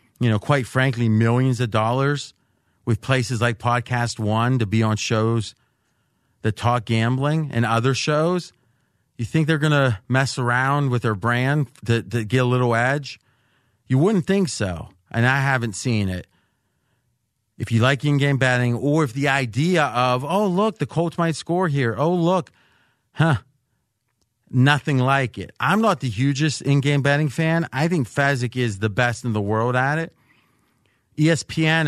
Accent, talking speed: American, 170 wpm